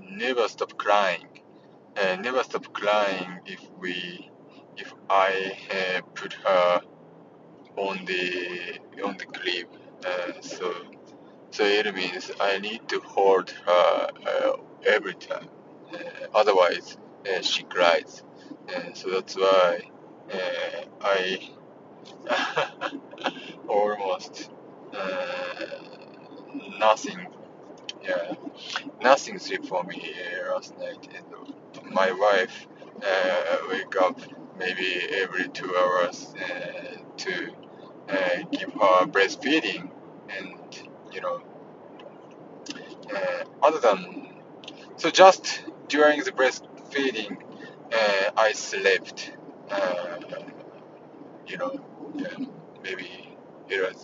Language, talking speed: English, 100 wpm